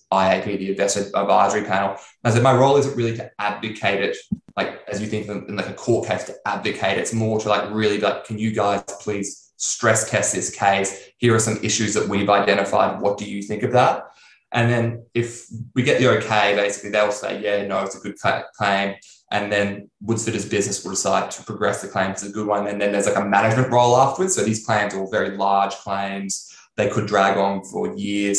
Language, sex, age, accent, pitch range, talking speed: English, male, 20-39, Australian, 100-110 Hz, 225 wpm